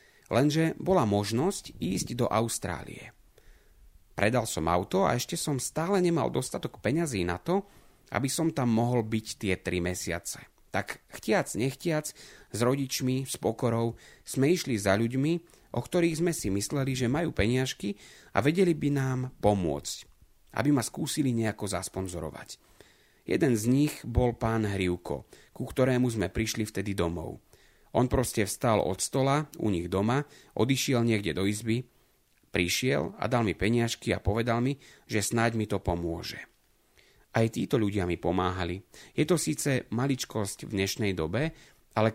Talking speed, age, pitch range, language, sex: 150 wpm, 30-49, 105-140 Hz, Slovak, male